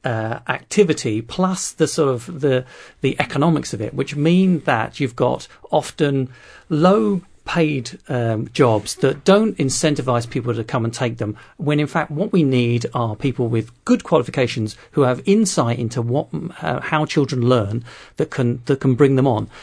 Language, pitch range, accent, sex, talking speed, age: English, 120-160 Hz, British, male, 175 wpm, 40-59